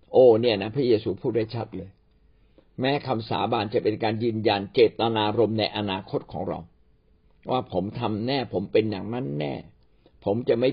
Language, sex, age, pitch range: Thai, male, 60-79, 100-135 Hz